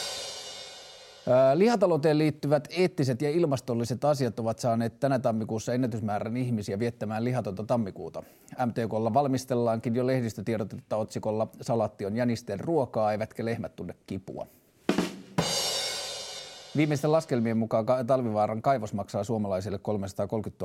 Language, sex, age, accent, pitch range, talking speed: Finnish, male, 30-49, native, 105-125 Hz, 105 wpm